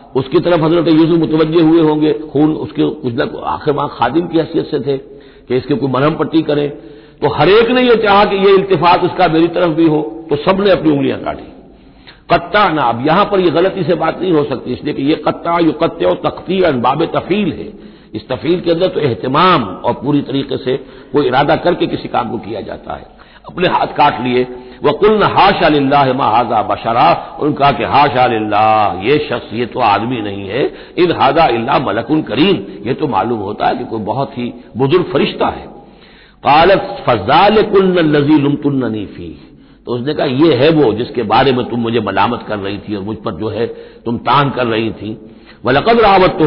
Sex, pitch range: male, 120-165 Hz